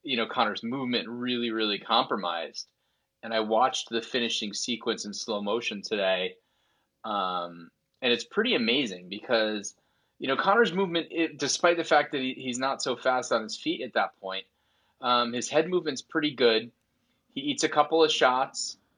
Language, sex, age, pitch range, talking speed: English, male, 30-49, 115-145 Hz, 175 wpm